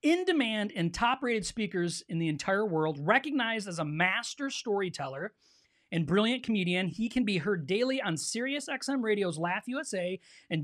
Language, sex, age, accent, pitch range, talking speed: English, male, 40-59, American, 170-240 Hz, 160 wpm